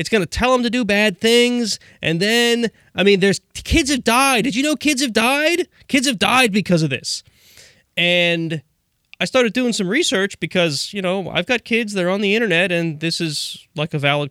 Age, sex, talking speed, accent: 30-49, male, 215 wpm, American